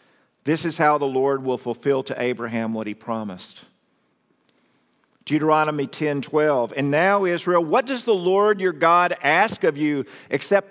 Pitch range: 135-170 Hz